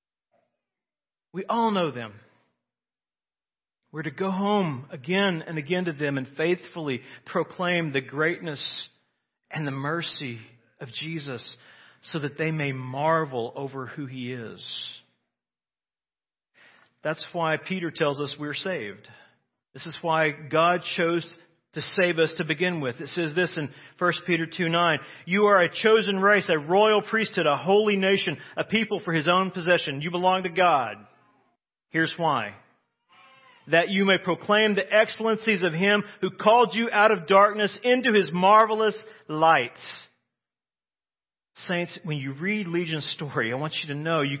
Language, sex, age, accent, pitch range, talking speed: English, male, 40-59, American, 150-195 Hz, 150 wpm